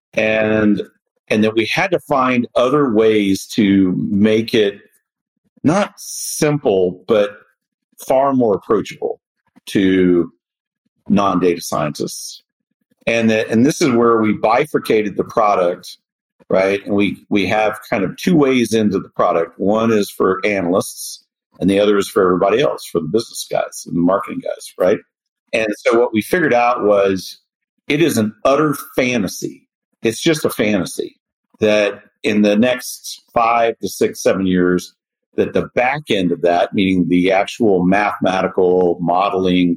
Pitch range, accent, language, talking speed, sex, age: 95-145 Hz, American, English, 150 wpm, male, 50-69